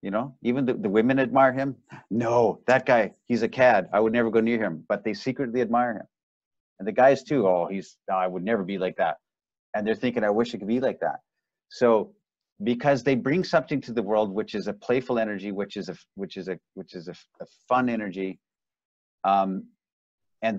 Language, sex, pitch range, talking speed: English, male, 105-125 Hz, 220 wpm